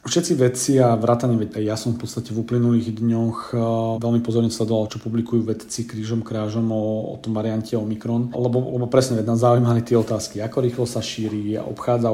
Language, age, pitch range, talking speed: Slovak, 40-59, 110-120 Hz, 185 wpm